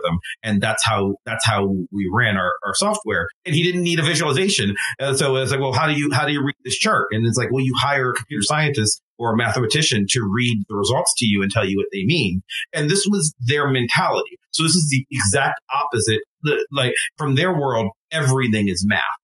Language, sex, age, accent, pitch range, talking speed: English, male, 30-49, American, 105-145 Hz, 220 wpm